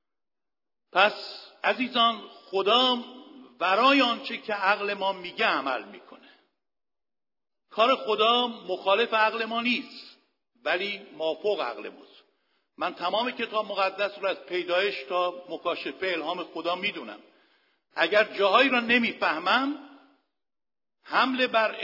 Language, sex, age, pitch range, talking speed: Persian, male, 60-79, 185-255 Hz, 105 wpm